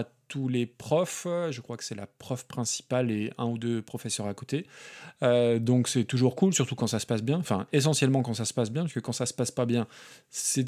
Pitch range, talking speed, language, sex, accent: 120-150 Hz, 245 wpm, French, male, French